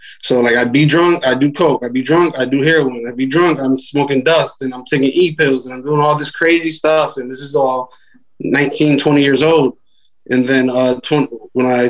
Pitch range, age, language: 125-150 Hz, 20-39, English